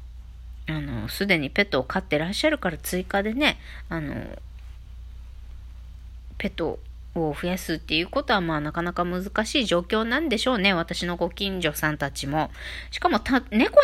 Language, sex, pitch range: Japanese, female, 145-220 Hz